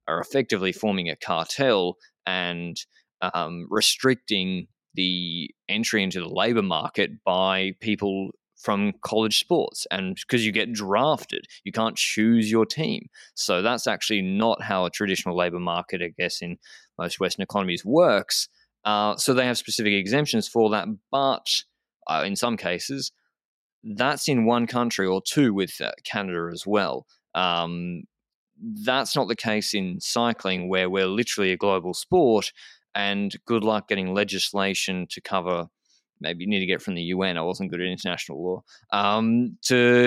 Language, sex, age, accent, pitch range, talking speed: English, male, 20-39, Australian, 95-120 Hz, 155 wpm